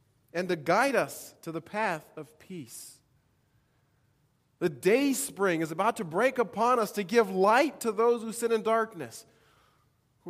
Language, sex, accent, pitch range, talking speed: English, male, American, 155-220 Hz, 165 wpm